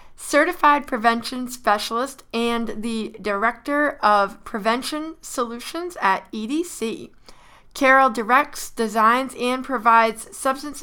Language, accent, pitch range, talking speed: English, American, 215-270 Hz, 95 wpm